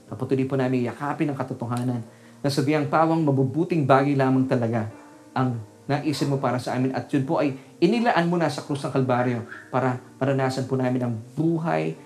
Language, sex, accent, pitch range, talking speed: Filipino, male, native, 120-145 Hz, 180 wpm